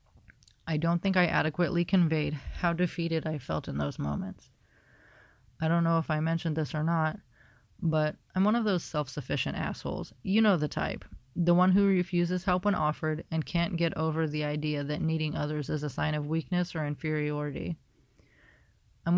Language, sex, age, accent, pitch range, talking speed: English, female, 30-49, American, 150-170 Hz, 180 wpm